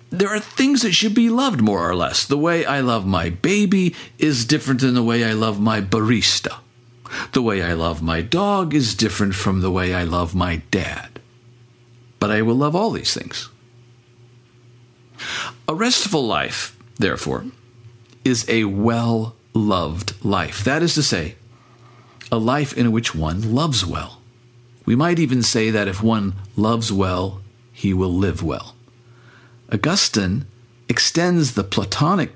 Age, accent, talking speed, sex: 50-69, American, 155 wpm, male